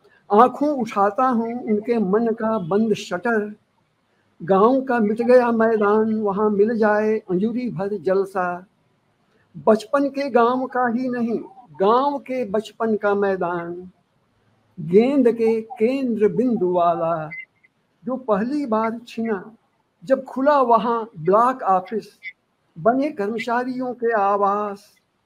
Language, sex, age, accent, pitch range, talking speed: Hindi, male, 60-79, native, 185-235 Hz, 115 wpm